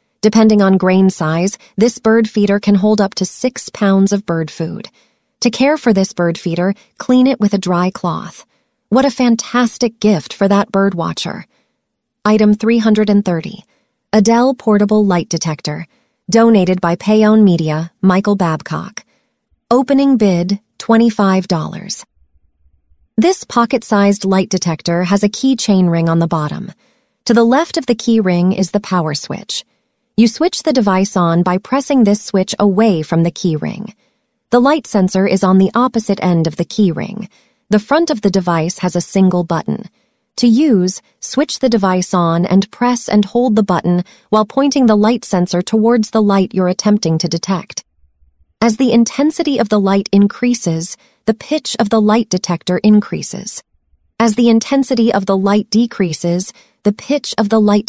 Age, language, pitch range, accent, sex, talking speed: 30-49, English, 180-235 Hz, American, female, 165 wpm